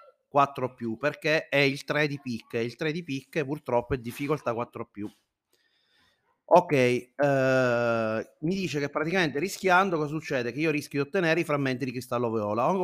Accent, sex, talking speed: native, male, 175 wpm